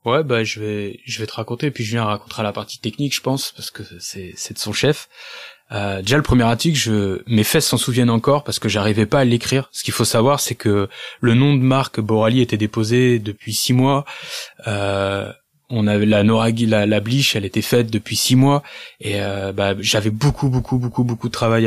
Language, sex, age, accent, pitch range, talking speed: French, male, 20-39, French, 110-135 Hz, 230 wpm